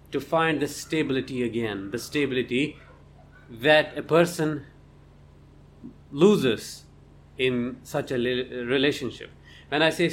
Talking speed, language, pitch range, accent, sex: 100 wpm, English, 115-150 Hz, Indian, male